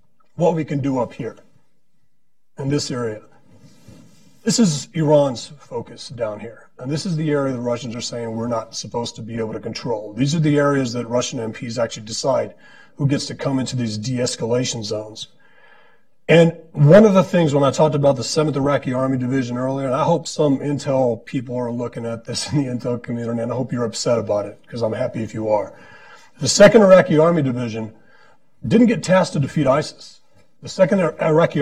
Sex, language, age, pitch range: male, English, 40-59, 120-155 Hz